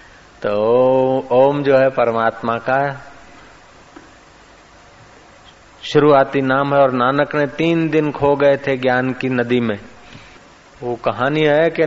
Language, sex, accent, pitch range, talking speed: Hindi, male, native, 120-145 Hz, 125 wpm